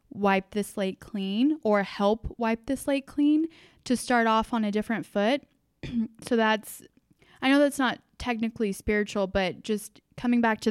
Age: 10-29